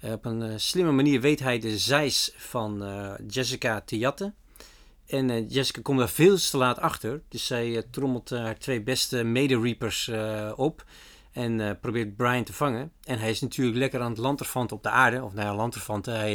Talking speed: 195 wpm